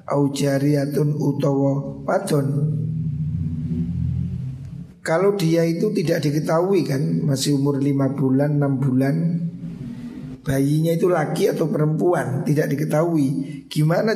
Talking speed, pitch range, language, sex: 90 wpm, 140-165 Hz, Indonesian, male